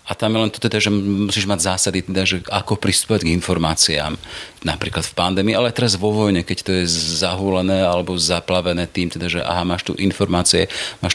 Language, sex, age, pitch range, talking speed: Slovak, male, 40-59, 90-100 Hz, 200 wpm